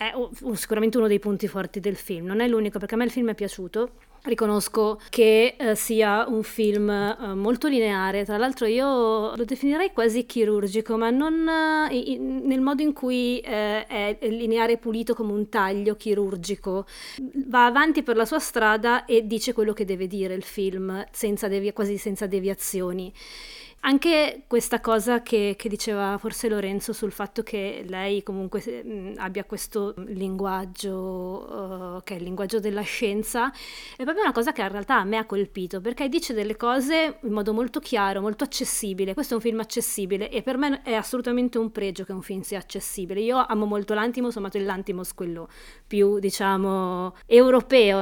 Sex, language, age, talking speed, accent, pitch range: female, Italian, 20-39, 175 wpm, native, 200-240 Hz